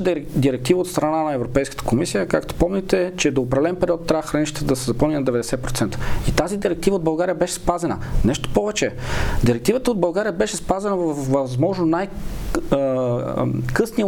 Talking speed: 155 wpm